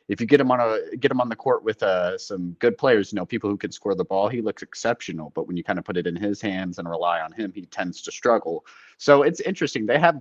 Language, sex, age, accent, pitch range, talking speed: English, male, 30-49, American, 90-115 Hz, 295 wpm